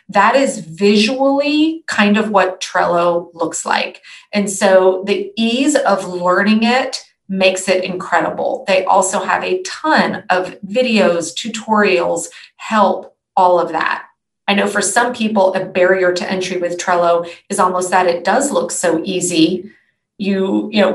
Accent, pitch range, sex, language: American, 180-215 Hz, female, English